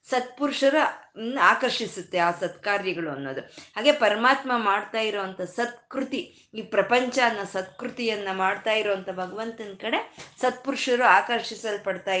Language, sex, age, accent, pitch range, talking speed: Kannada, female, 20-39, native, 185-235 Hz, 90 wpm